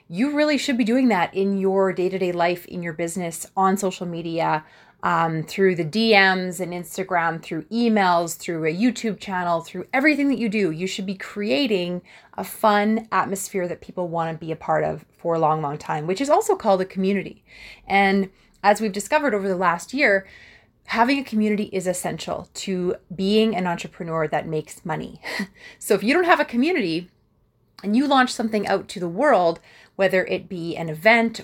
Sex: female